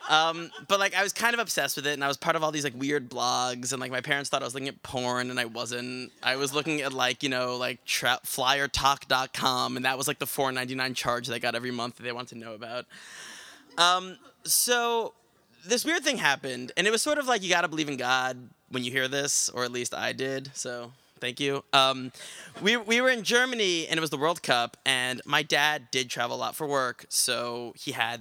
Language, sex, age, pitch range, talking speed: English, male, 20-39, 125-180 Hz, 245 wpm